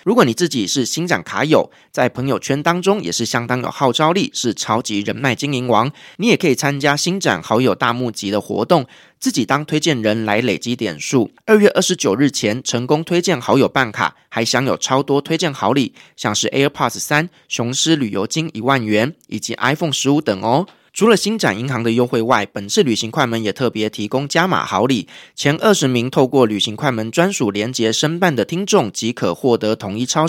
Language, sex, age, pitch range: Chinese, male, 20-39, 115-155 Hz